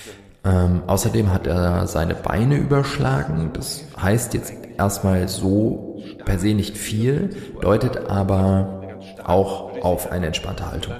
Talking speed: 125 wpm